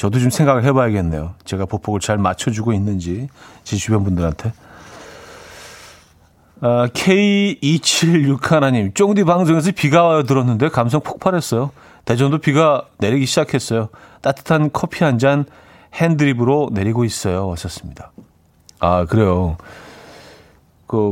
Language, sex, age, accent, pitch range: Korean, male, 40-59, native, 110-160 Hz